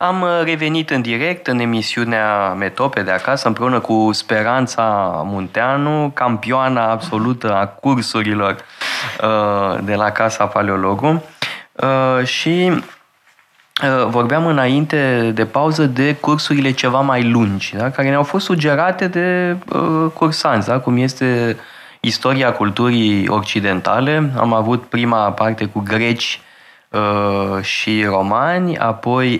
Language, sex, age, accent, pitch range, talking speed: Romanian, male, 20-39, native, 105-130 Hz, 105 wpm